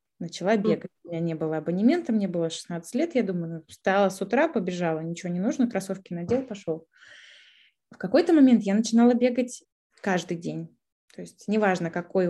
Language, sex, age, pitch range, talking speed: Russian, female, 20-39, 180-230 Hz, 165 wpm